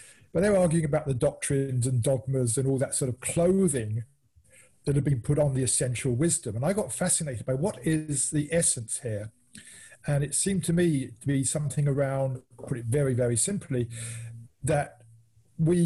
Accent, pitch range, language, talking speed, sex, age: British, 125-150 Hz, English, 185 wpm, male, 40-59